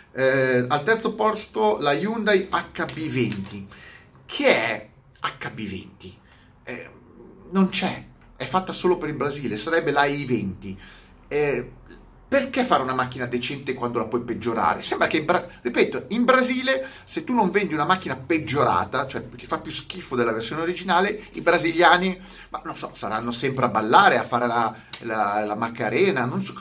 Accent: native